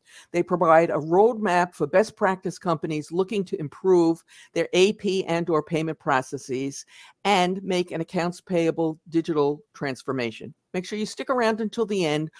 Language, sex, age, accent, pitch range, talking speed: English, female, 50-69, American, 160-200 Hz, 155 wpm